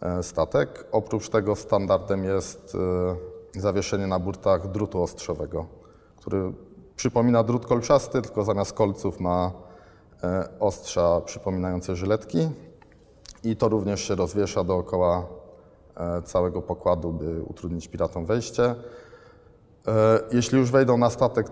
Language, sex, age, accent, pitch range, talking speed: Polish, male, 20-39, native, 90-105 Hz, 105 wpm